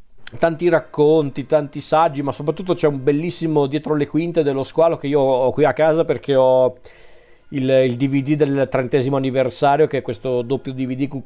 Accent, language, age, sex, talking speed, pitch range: native, Italian, 40-59, male, 180 wpm, 130-155 Hz